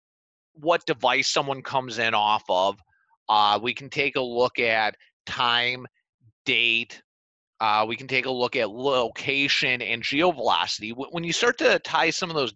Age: 30-49